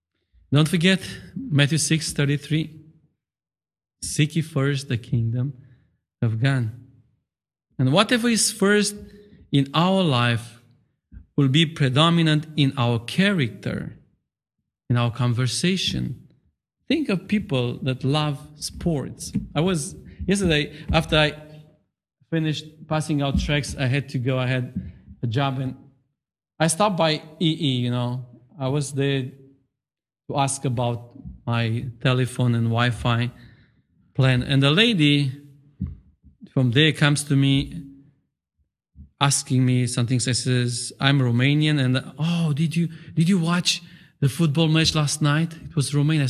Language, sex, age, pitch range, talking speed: English, male, 40-59, 125-160 Hz, 130 wpm